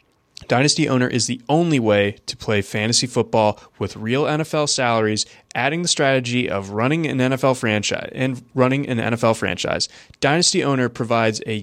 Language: English